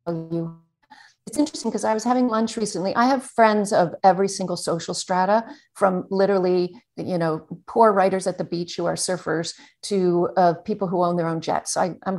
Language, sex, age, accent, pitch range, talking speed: English, female, 50-69, American, 175-215 Hz, 185 wpm